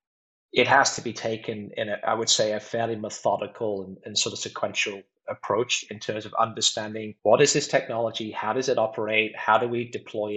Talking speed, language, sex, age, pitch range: 195 wpm, English, male, 20-39, 105-125 Hz